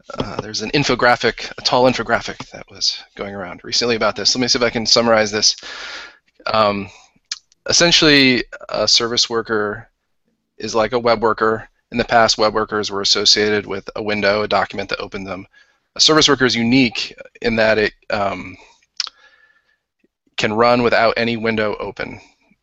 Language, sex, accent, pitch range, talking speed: English, male, American, 105-120 Hz, 165 wpm